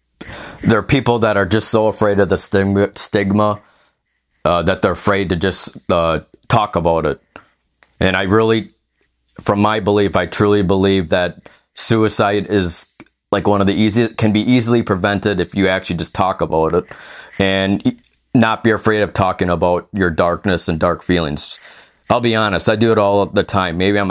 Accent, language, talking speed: American, English, 180 wpm